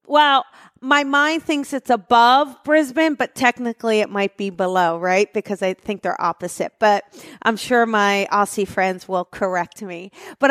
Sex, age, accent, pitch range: female, 40-59, American, 200-250 Hz